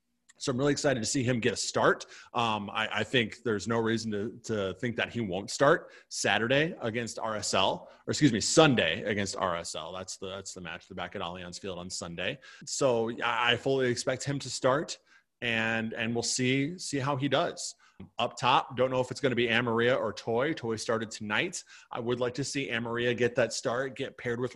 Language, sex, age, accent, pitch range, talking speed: English, male, 30-49, American, 105-130 Hz, 215 wpm